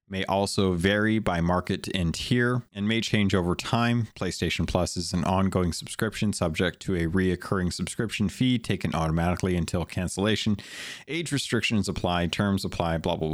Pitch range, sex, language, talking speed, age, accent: 90-110 Hz, male, English, 155 wpm, 30-49, American